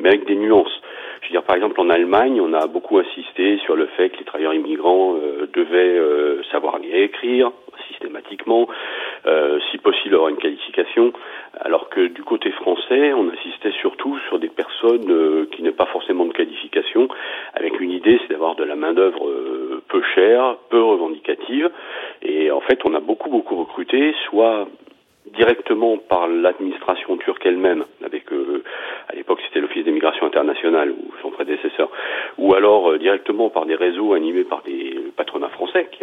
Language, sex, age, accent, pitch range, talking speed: French, male, 40-59, French, 355-415 Hz, 175 wpm